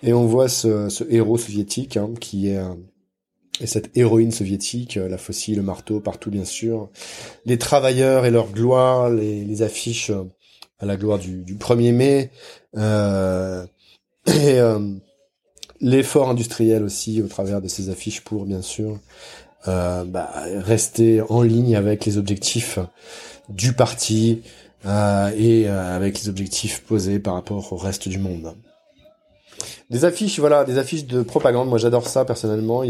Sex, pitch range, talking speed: male, 100-125 Hz, 155 wpm